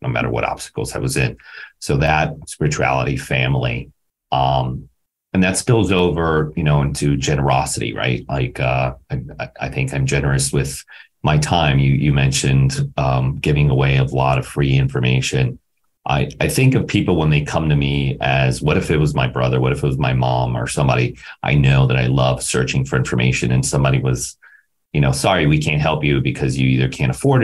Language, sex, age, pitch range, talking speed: English, male, 40-59, 65-75 Hz, 195 wpm